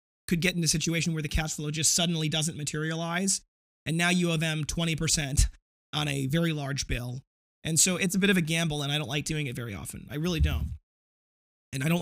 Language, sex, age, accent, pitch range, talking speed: English, male, 30-49, American, 130-165 Hz, 230 wpm